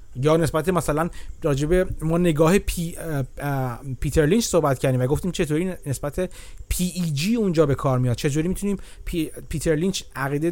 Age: 30-49